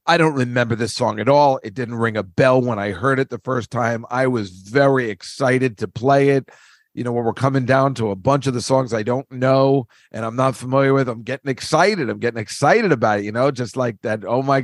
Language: English